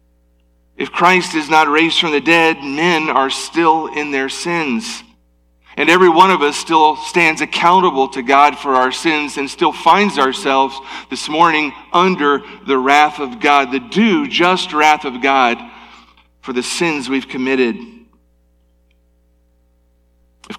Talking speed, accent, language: 145 wpm, American, English